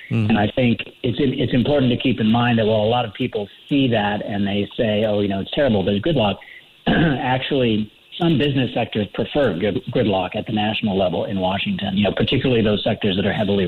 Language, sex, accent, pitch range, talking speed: English, male, American, 100-120 Hz, 220 wpm